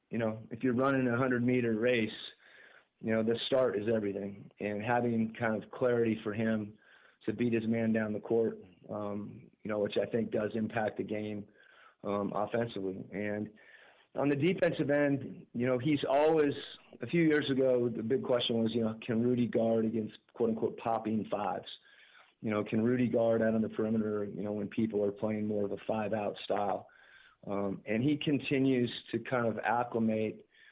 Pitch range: 105-120 Hz